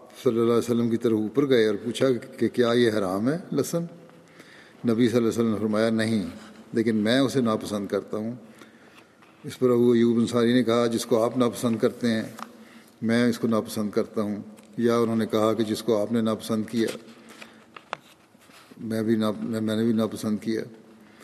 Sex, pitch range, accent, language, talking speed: male, 110-125 Hz, Indian, English, 145 wpm